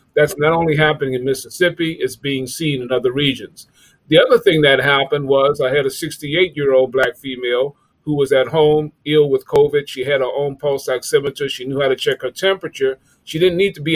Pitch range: 140-210 Hz